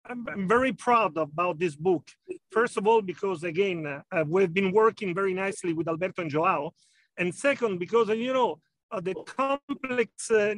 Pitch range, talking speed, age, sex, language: 180-225 Hz, 180 wpm, 50-69, male, English